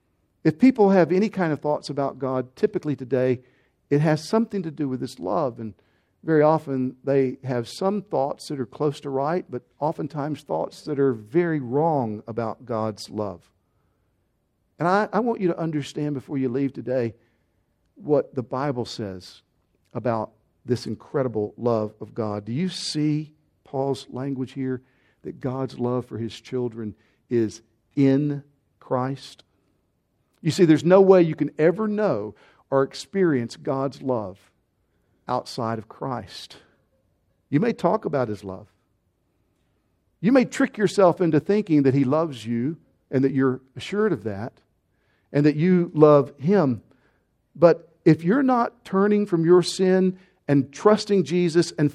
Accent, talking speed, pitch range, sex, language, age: American, 150 wpm, 120-170 Hz, male, English, 50-69